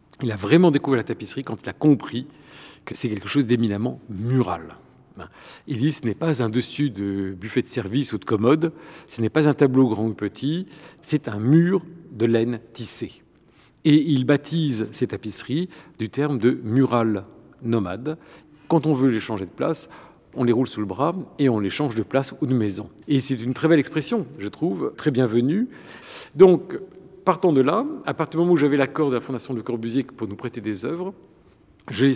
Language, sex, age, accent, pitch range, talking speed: French, male, 50-69, French, 115-155 Hz, 210 wpm